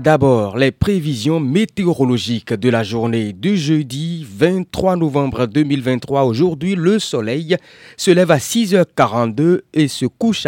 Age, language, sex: 30-49, French, male